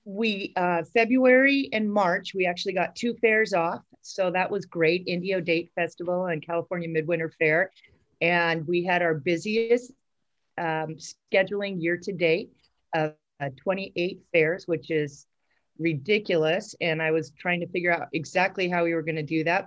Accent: American